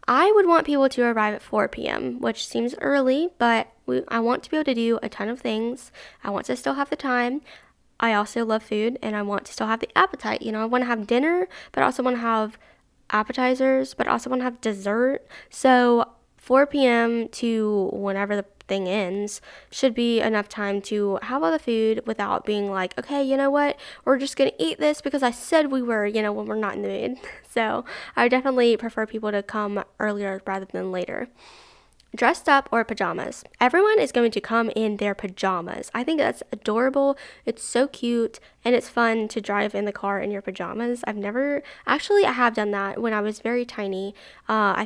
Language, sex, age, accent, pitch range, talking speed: English, female, 10-29, American, 205-250 Hz, 215 wpm